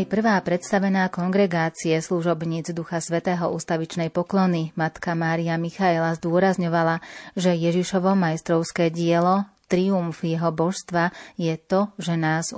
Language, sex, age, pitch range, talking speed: Slovak, female, 30-49, 165-185 Hz, 110 wpm